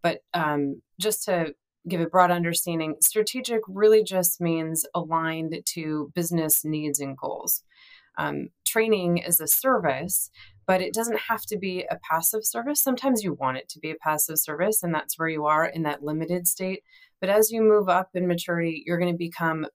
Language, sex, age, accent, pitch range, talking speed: English, female, 30-49, American, 155-185 Hz, 185 wpm